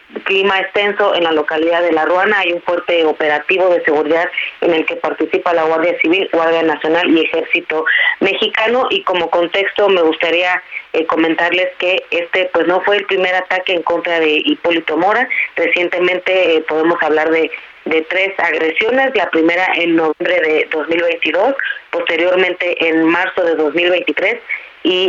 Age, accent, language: 30-49, Mexican, Spanish